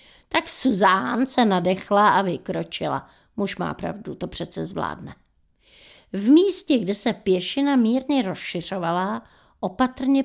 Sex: female